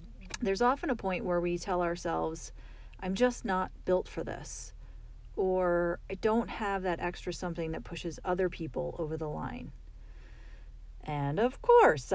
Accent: American